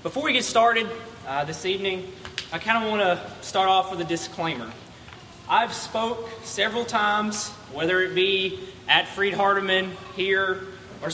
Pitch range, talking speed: 155-210 Hz, 155 wpm